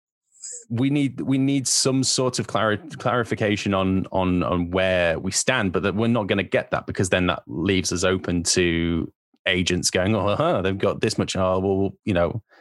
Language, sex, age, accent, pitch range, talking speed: English, male, 20-39, British, 90-115 Hz, 200 wpm